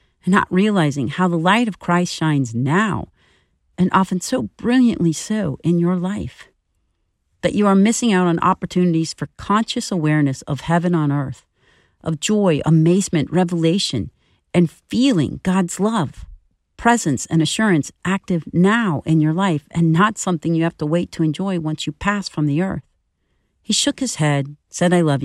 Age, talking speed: 50-69, 165 wpm